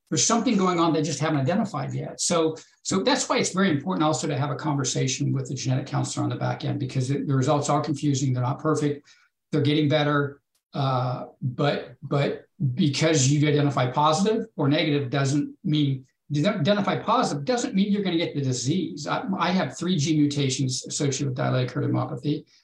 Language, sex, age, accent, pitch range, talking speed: English, male, 60-79, American, 140-160 Hz, 185 wpm